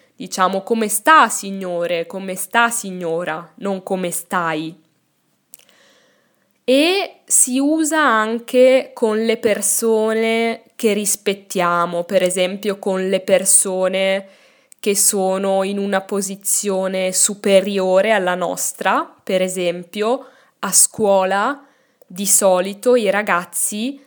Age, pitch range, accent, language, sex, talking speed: 10-29, 190-230 Hz, native, Italian, female, 100 wpm